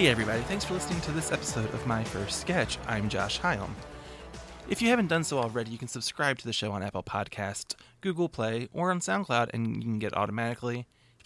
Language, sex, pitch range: English, male, 105-135 Hz